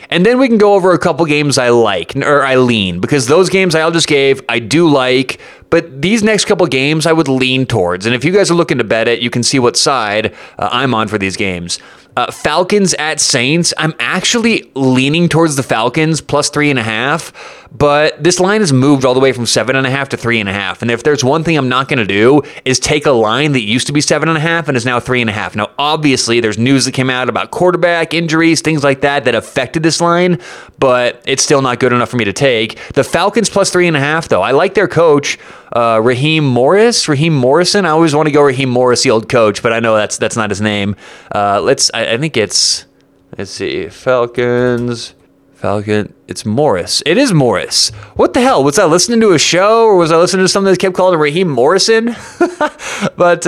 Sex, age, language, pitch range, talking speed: male, 20-39, English, 120-165 Hz, 235 wpm